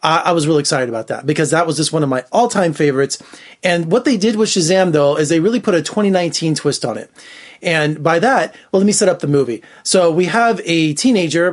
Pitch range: 145-180 Hz